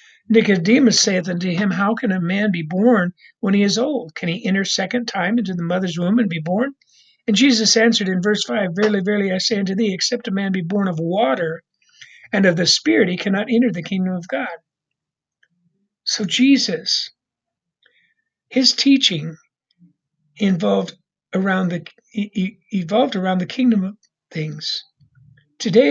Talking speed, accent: 165 wpm, American